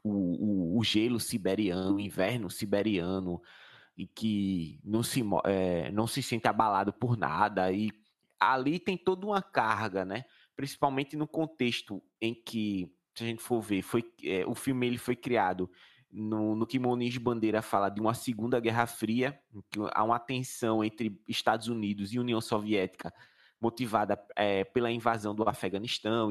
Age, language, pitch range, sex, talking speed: 20-39, Portuguese, 105-145 Hz, male, 160 wpm